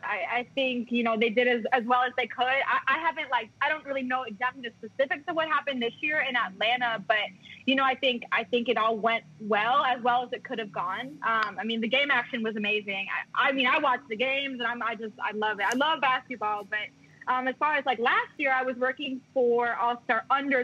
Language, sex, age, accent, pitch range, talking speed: English, female, 20-39, American, 225-265 Hz, 255 wpm